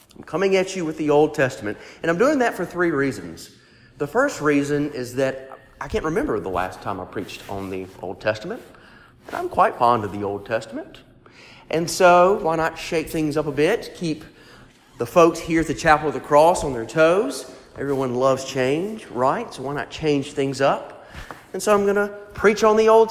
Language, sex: English, male